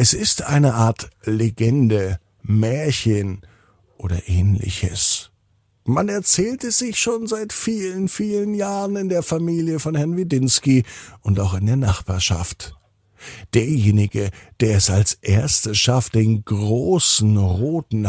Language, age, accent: German, 50-69, German